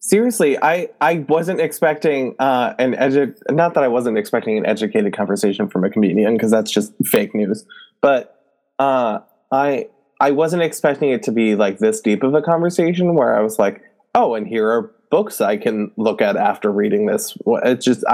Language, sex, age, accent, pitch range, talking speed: English, male, 20-39, American, 105-145 Hz, 190 wpm